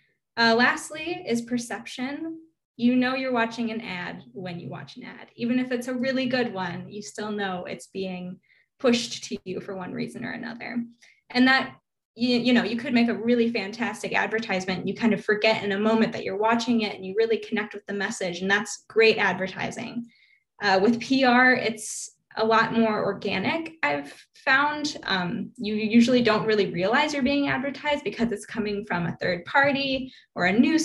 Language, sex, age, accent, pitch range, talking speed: English, female, 10-29, American, 205-250 Hz, 190 wpm